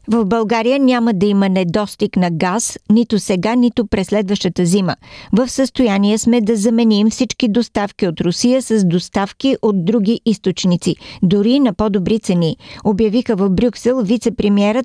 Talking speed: 150 wpm